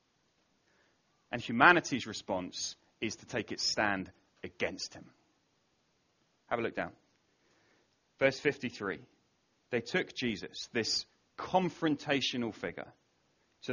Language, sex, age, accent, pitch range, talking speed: English, male, 30-49, British, 135-175 Hz, 100 wpm